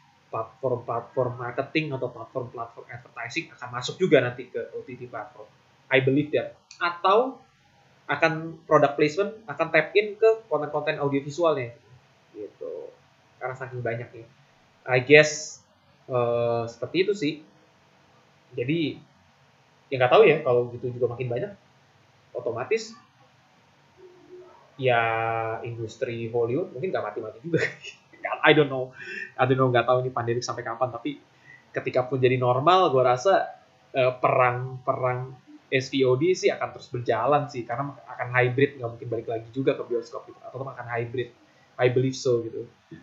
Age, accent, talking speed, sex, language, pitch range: 20-39, native, 140 wpm, male, Indonesian, 120-155 Hz